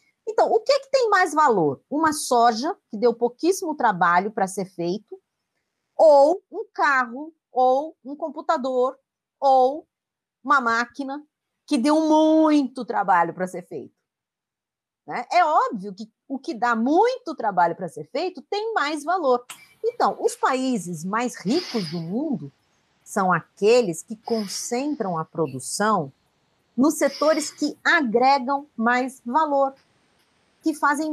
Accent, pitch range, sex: Brazilian, 205-310 Hz, female